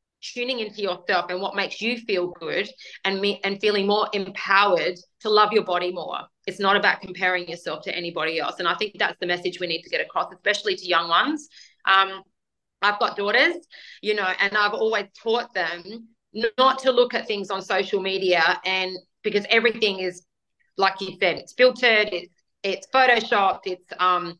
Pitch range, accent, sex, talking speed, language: 195-245 Hz, Australian, female, 185 wpm, English